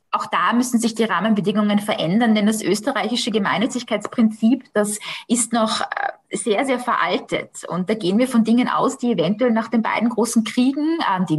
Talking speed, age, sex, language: 170 wpm, 20-39, female, German